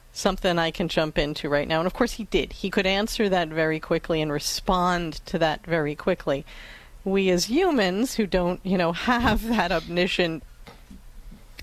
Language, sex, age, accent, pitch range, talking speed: English, female, 40-59, American, 165-210 Hz, 175 wpm